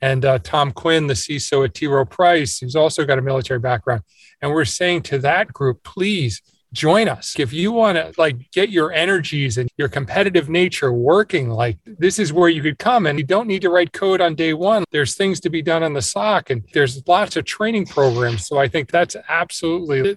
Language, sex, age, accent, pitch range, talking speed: English, male, 40-59, American, 135-180 Hz, 220 wpm